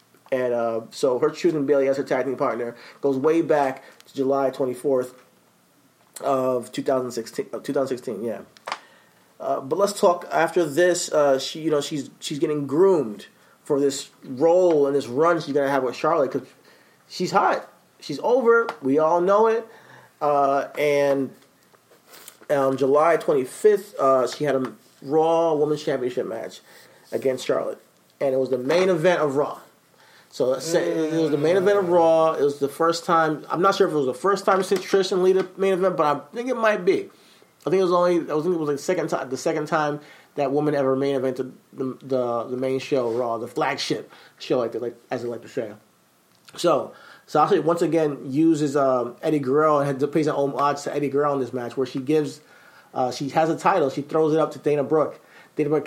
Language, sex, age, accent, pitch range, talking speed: English, male, 30-49, American, 135-165 Hz, 205 wpm